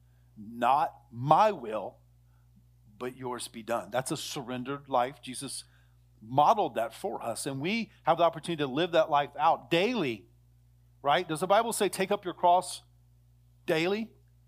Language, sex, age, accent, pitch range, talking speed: English, male, 40-59, American, 115-165 Hz, 155 wpm